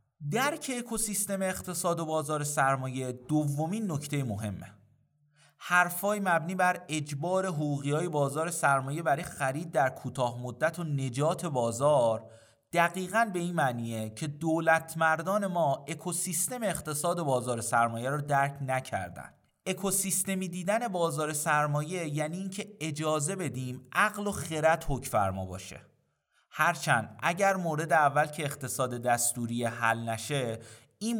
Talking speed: 125 wpm